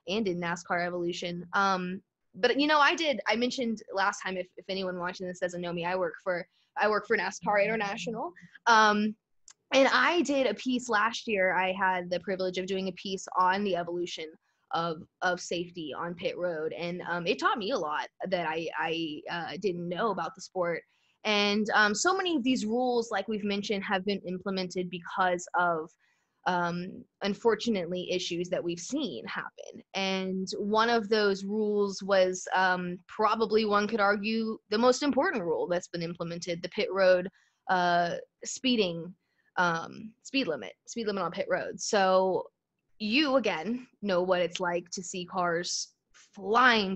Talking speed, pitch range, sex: 175 wpm, 180-215 Hz, female